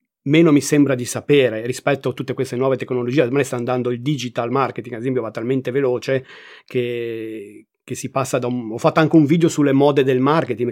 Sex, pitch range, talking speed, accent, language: male, 125-150 Hz, 215 wpm, native, Italian